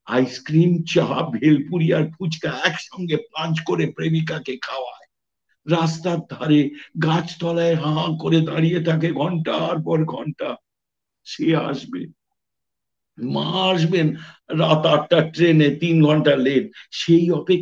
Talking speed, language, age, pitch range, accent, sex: 125 wpm, English, 60-79, 150-170 Hz, Indian, male